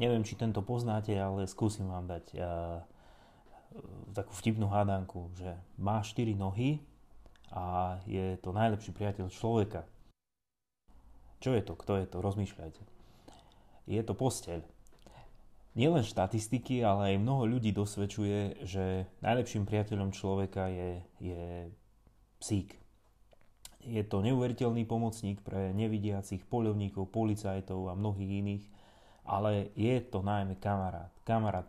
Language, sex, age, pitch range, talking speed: Slovak, male, 30-49, 95-110 Hz, 125 wpm